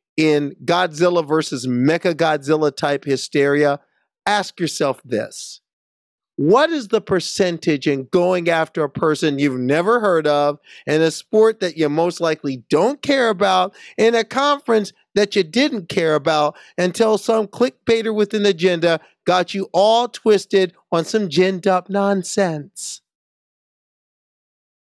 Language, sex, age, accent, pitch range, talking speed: English, male, 40-59, American, 155-205 Hz, 135 wpm